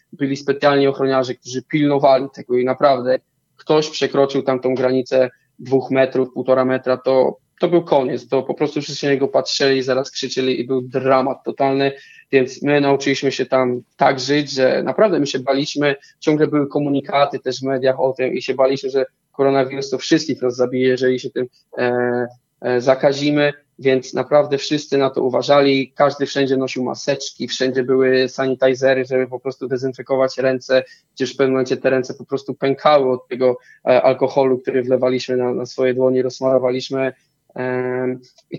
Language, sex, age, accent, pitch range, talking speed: Polish, male, 20-39, native, 130-140 Hz, 160 wpm